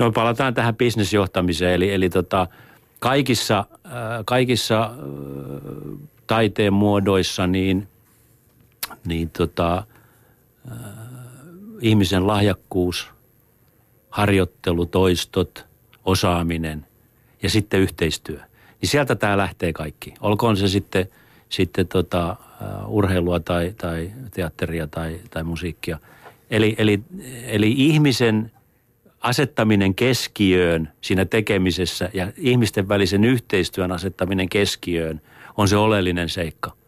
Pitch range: 95-120 Hz